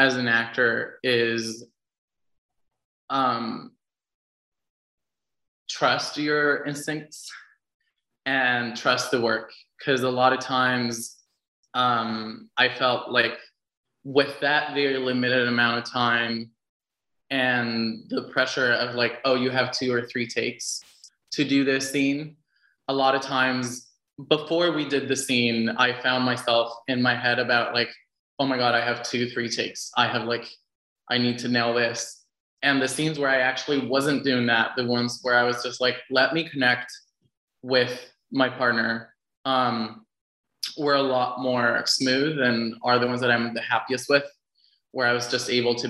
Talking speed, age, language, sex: 155 wpm, 20-39, English, male